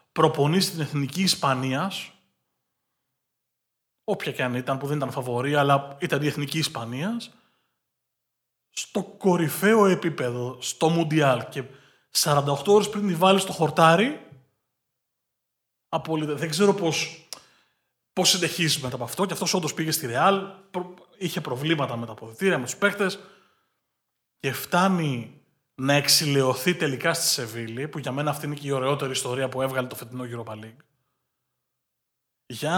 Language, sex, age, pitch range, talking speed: Greek, male, 20-39, 135-185 Hz, 135 wpm